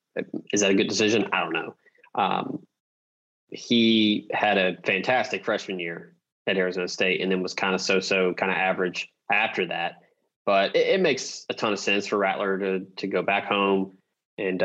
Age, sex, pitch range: 20-39, male, 95-105 Hz